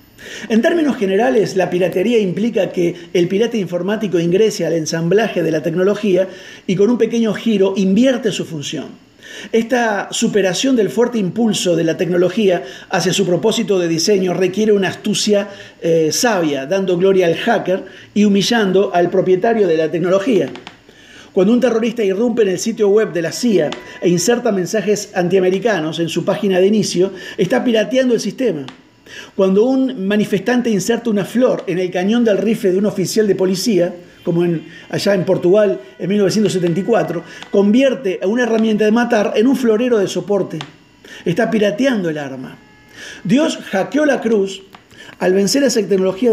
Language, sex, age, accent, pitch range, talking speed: Spanish, male, 50-69, Argentinian, 180-225 Hz, 160 wpm